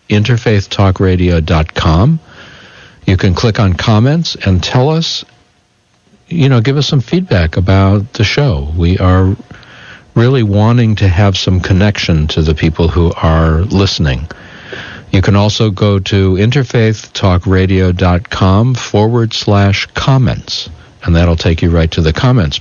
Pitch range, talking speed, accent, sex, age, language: 90-115 Hz, 135 wpm, American, male, 60-79, English